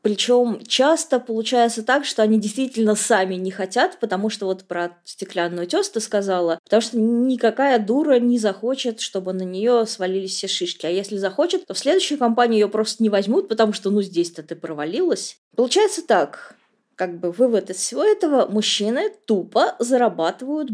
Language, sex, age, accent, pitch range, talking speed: Russian, female, 20-39, native, 195-255 Hz, 165 wpm